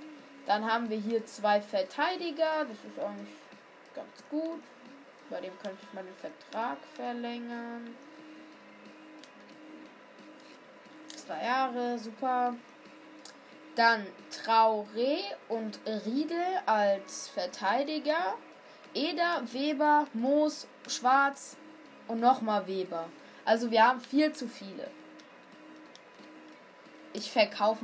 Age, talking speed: 20-39, 95 wpm